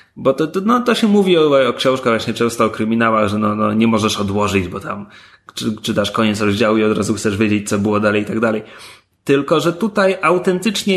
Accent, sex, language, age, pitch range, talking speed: native, male, Polish, 30-49, 105-140 Hz, 225 wpm